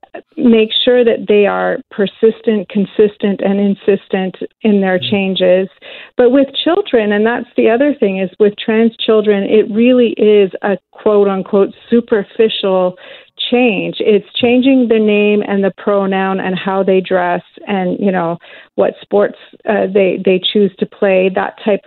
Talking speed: 155 wpm